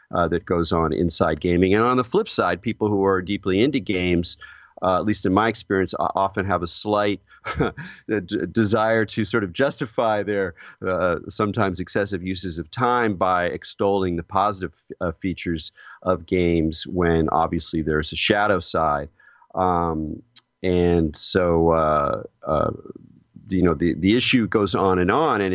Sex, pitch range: male, 85-100 Hz